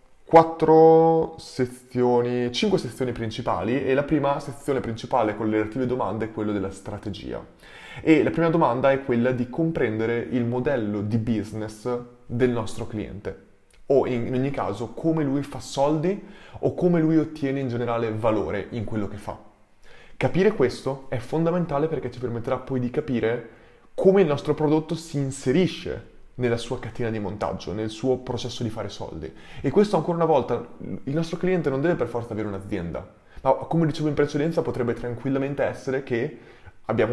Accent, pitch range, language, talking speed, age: native, 115-145 Hz, Italian, 165 wpm, 20-39